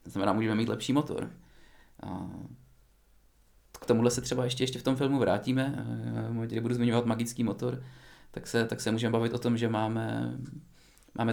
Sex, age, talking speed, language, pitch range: male, 20-39, 175 wpm, Czech, 105-120 Hz